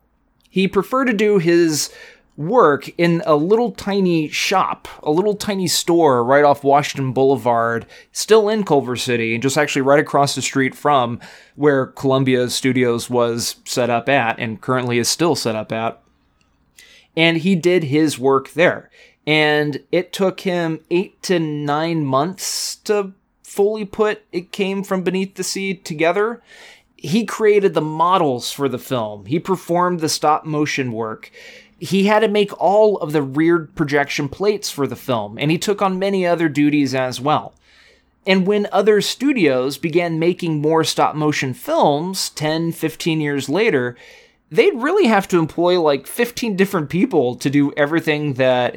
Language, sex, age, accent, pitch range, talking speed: English, male, 20-39, American, 135-190 Hz, 155 wpm